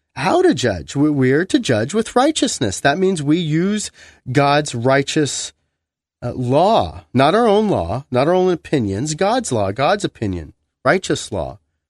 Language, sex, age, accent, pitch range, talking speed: English, male, 40-59, American, 105-175 Hz, 150 wpm